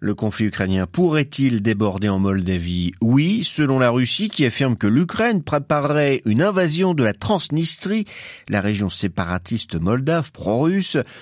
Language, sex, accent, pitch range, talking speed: French, male, French, 95-130 Hz, 140 wpm